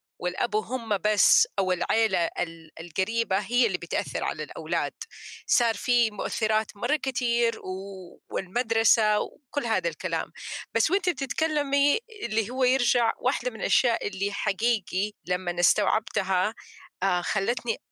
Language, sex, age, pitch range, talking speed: Arabic, female, 30-49, 195-265 Hz, 115 wpm